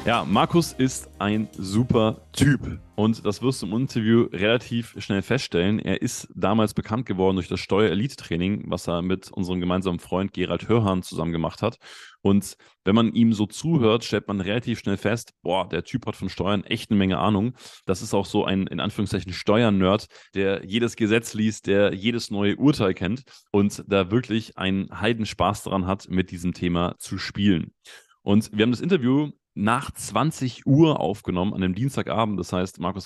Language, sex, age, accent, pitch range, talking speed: German, male, 20-39, German, 95-115 Hz, 180 wpm